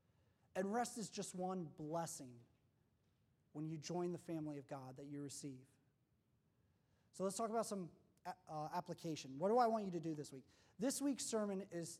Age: 30-49